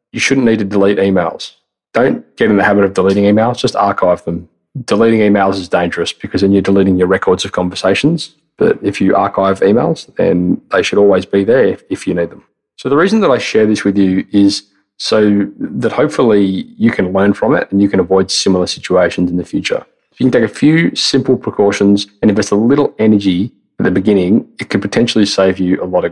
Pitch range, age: 95-110 Hz, 20-39